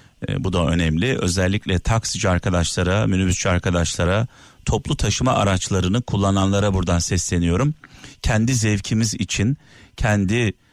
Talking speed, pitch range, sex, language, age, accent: 105 wpm, 95-140 Hz, male, Turkish, 50-69, native